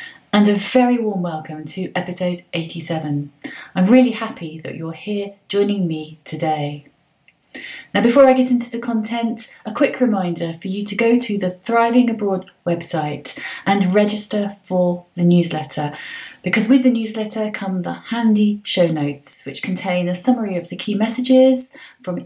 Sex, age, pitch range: female, 30-49, 165-220 Hz